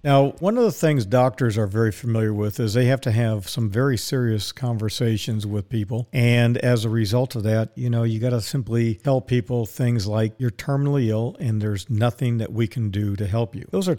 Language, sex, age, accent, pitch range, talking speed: English, male, 50-69, American, 115-135 Hz, 220 wpm